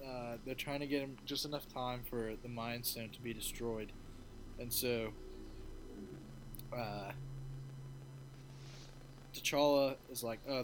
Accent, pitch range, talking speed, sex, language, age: American, 120-135 Hz, 130 wpm, male, English, 20-39